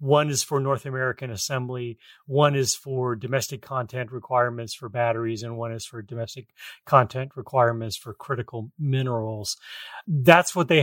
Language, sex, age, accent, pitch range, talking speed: English, male, 30-49, American, 125-150 Hz, 150 wpm